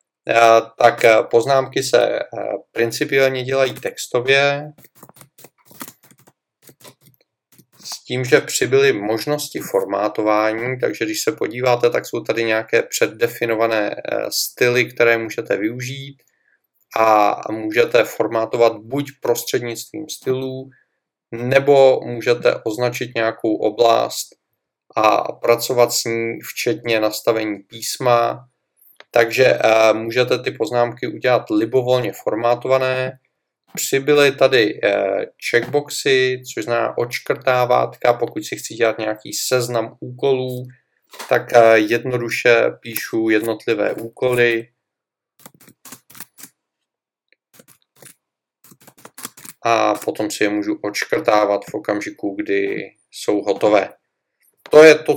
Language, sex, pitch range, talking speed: Czech, male, 115-140 Hz, 90 wpm